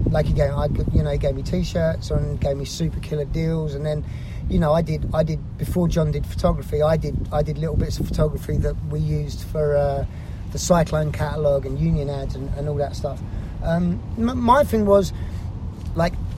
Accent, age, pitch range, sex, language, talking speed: British, 30-49, 130-170 Hz, male, English, 205 wpm